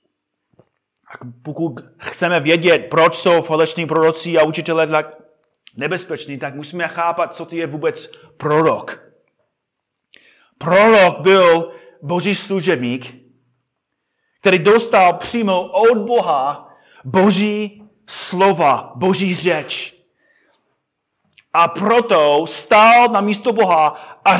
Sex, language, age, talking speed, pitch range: male, Czech, 30-49, 100 wpm, 150-200 Hz